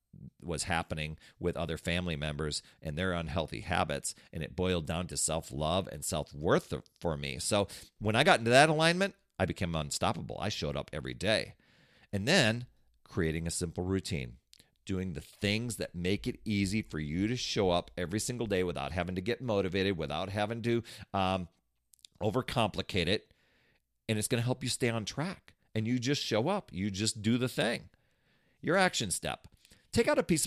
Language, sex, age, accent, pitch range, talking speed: English, male, 40-59, American, 85-110 Hz, 185 wpm